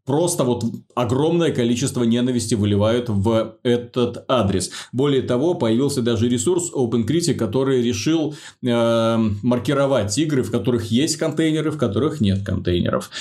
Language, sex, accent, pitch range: Russian, male, native, 115-145 Hz